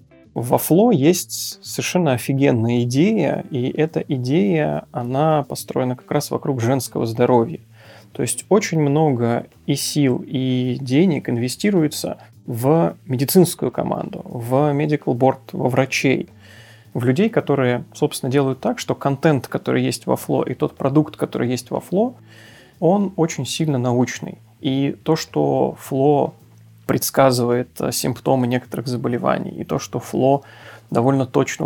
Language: Russian